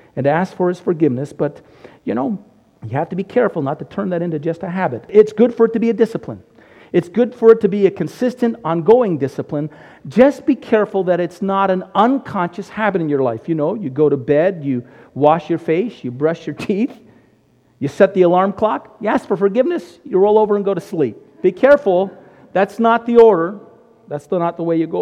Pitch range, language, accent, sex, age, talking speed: 140-195 Hz, English, American, male, 50-69, 225 wpm